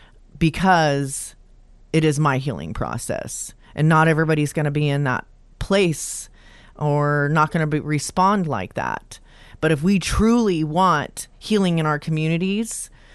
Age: 30-49